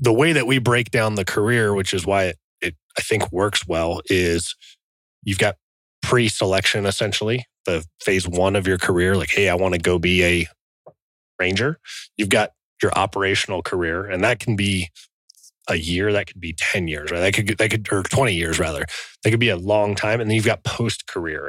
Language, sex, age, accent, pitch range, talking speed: English, male, 30-49, American, 95-120 Hz, 195 wpm